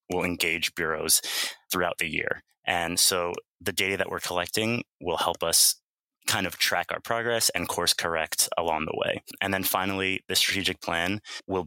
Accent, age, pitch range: American, 20-39, 85-105 Hz